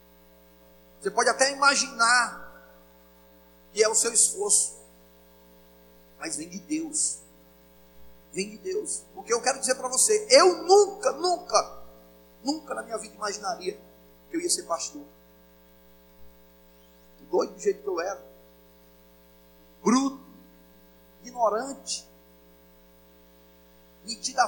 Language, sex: Portuguese, male